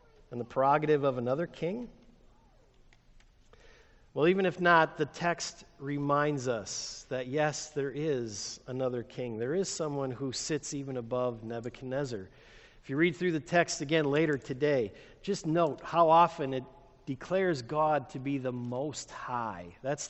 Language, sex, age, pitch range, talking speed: English, male, 50-69, 125-180 Hz, 145 wpm